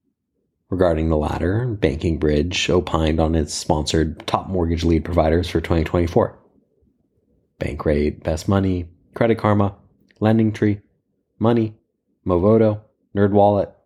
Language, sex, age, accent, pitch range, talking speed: English, male, 30-49, American, 80-100 Hz, 105 wpm